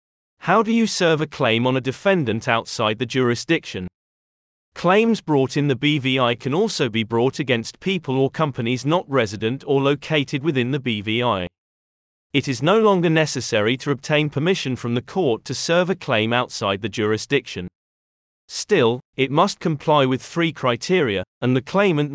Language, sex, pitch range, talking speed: English, male, 115-160 Hz, 165 wpm